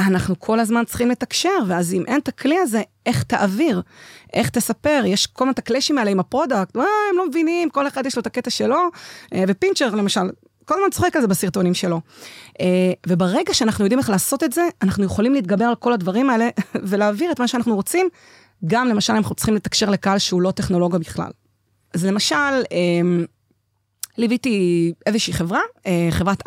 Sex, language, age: female, Hebrew, 30-49